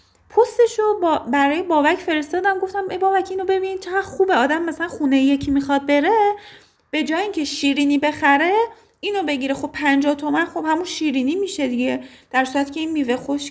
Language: Persian